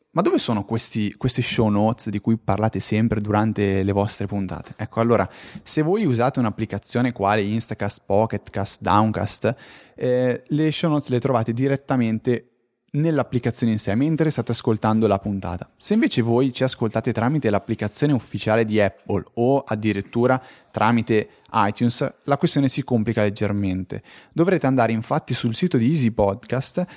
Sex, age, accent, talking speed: male, 20-39, native, 145 wpm